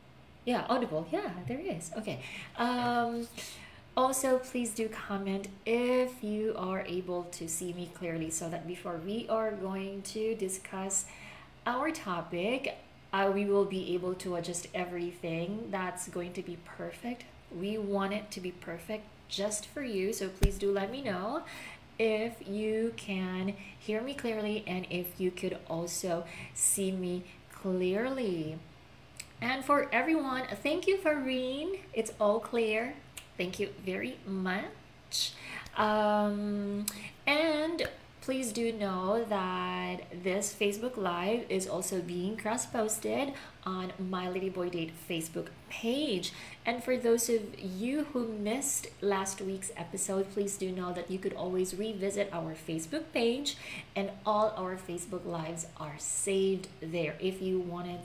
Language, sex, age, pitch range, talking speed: English, female, 20-39, 180-220 Hz, 140 wpm